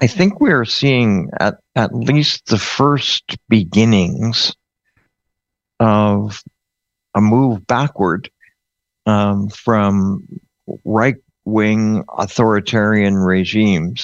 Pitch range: 100-115 Hz